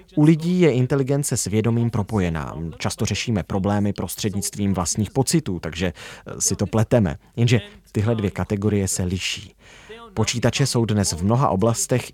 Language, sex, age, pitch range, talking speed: Czech, male, 30-49, 95-125 Hz, 145 wpm